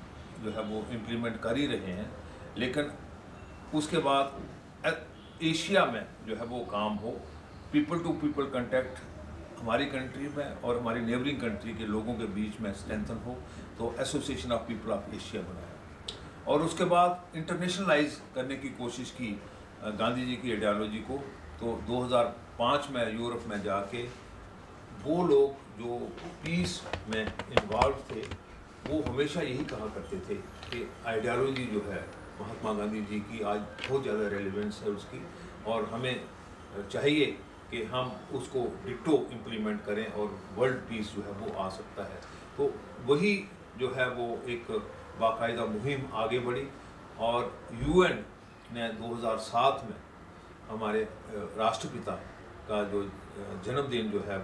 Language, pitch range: Urdu, 105-130 Hz